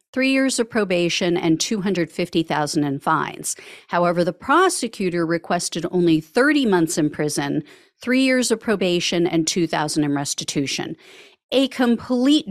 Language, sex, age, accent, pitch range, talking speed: English, female, 50-69, American, 170-245 Hz, 130 wpm